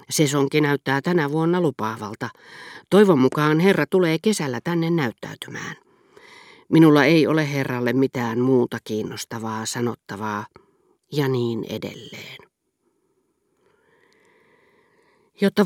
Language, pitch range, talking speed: Finnish, 125-175 Hz, 90 wpm